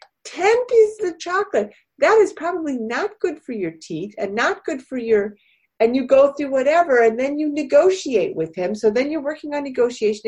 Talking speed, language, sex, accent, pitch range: 200 wpm, English, female, American, 215-295 Hz